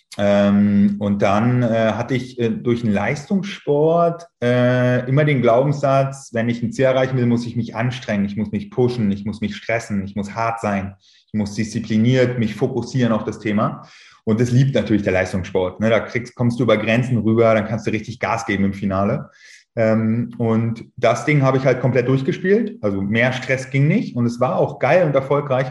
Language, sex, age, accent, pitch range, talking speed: German, male, 30-49, German, 110-130 Hz, 205 wpm